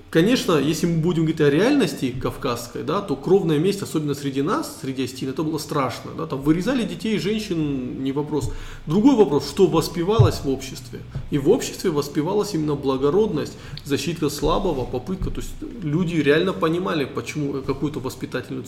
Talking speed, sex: 165 wpm, male